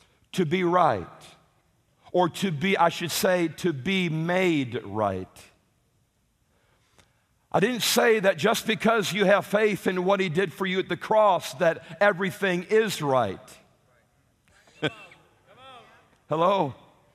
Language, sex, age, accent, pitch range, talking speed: English, male, 50-69, American, 190-265 Hz, 125 wpm